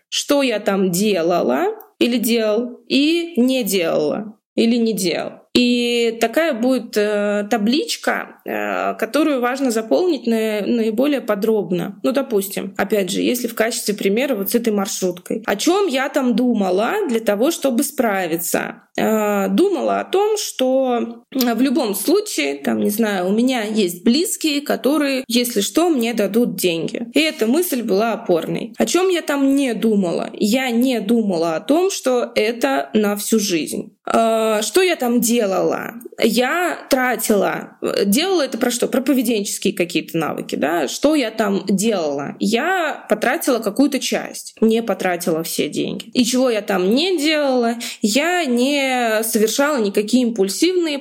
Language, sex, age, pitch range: Russian, female, 20-39, 205-265 Hz